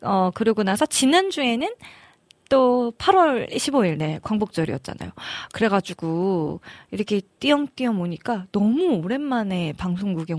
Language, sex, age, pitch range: Korean, female, 20-39, 190-260 Hz